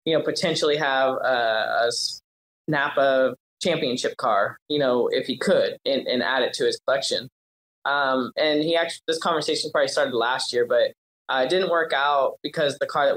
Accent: American